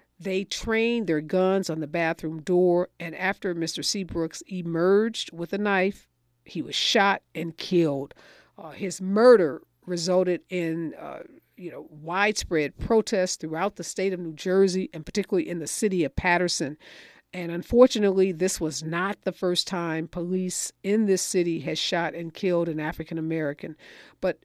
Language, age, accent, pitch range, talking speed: English, 50-69, American, 175-230 Hz, 155 wpm